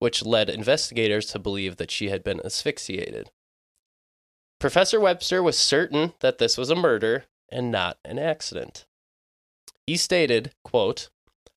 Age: 20-39